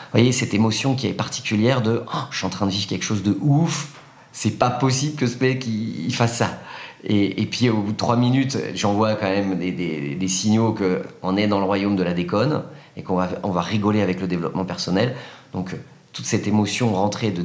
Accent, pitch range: French, 100-135 Hz